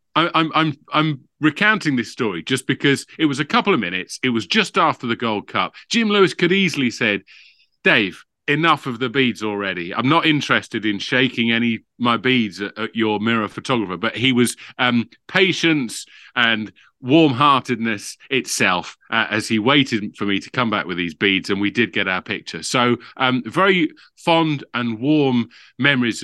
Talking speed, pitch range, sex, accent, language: 180 wpm, 110-140 Hz, male, British, English